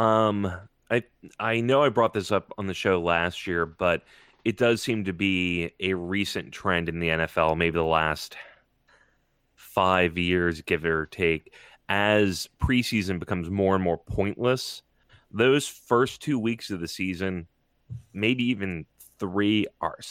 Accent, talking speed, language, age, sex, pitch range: American, 155 wpm, English, 30-49, male, 90-120 Hz